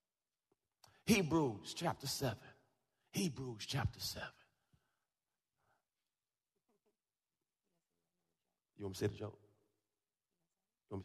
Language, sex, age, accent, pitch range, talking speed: English, male, 40-59, American, 115-160 Hz, 60 wpm